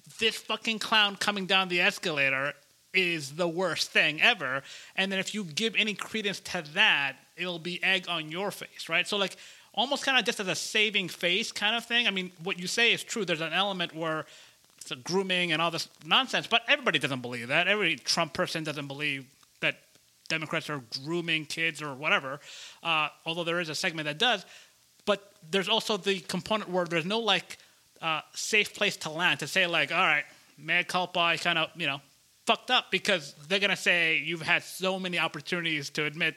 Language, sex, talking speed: English, male, 200 wpm